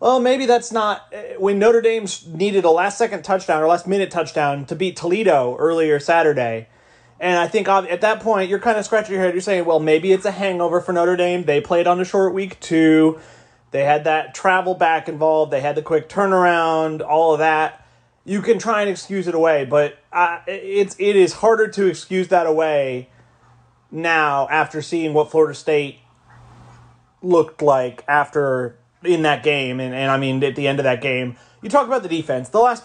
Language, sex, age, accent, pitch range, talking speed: English, male, 30-49, American, 145-185 Hz, 200 wpm